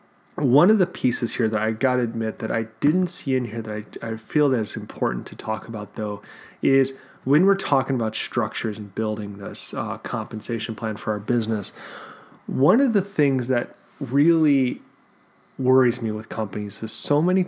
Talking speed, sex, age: 190 wpm, male, 30-49